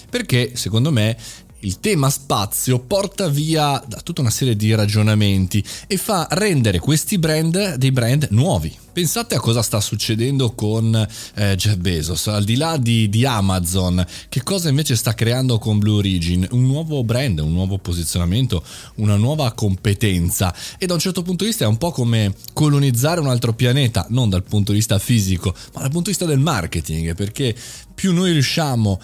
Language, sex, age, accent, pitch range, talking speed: Italian, male, 20-39, native, 105-150 Hz, 180 wpm